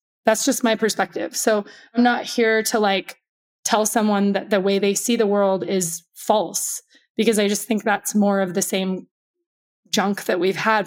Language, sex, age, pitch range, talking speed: English, female, 20-39, 195-230 Hz, 190 wpm